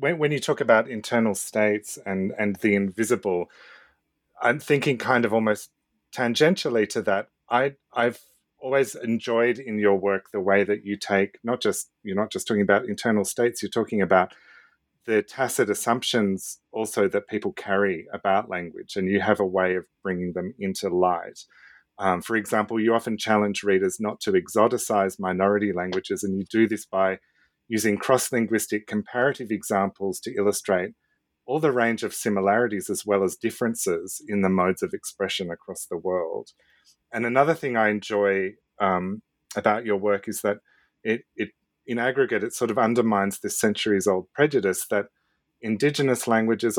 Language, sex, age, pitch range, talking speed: English, male, 30-49, 95-115 Hz, 160 wpm